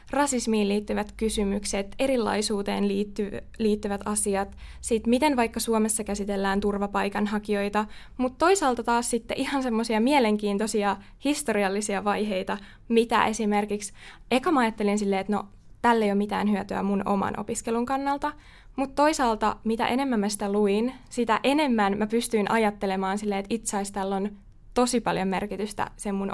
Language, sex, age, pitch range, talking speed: Finnish, female, 20-39, 205-240 Hz, 130 wpm